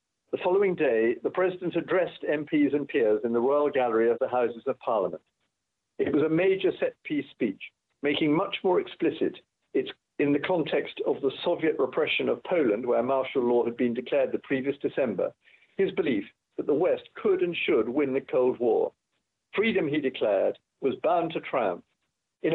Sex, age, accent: male, 50-69, British